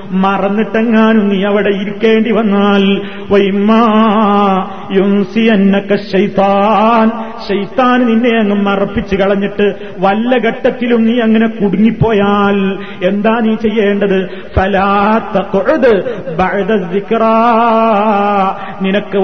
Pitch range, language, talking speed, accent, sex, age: 200-225 Hz, Malayalam, 65 wpm, native, male, 30-49